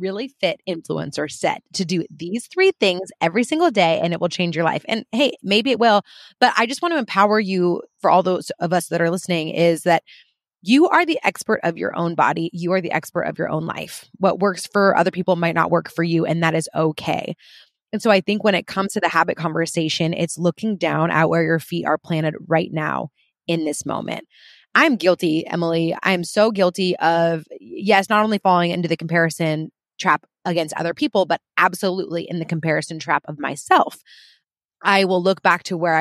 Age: 20-39